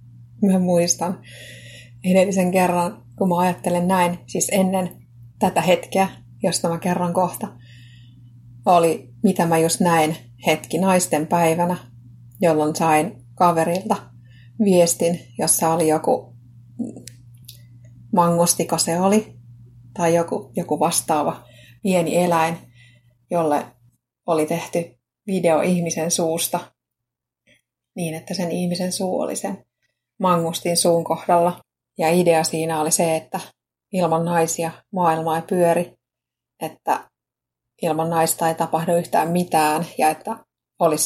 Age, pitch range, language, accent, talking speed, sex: 30-49, 145-180 Hz, Finnish, native, 115 wpm, female